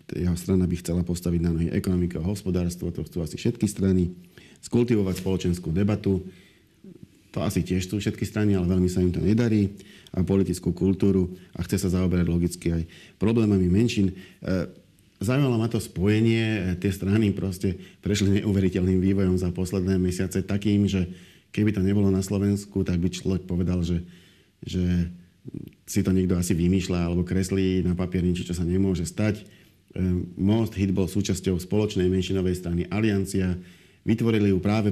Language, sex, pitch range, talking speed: Slovak, male, 90-100 Hz, 160 wpm